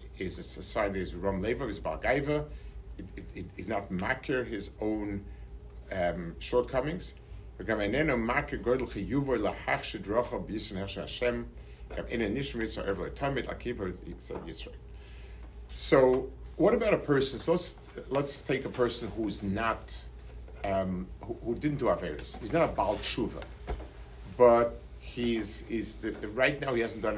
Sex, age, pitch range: male, 50-69, 85-125 Hz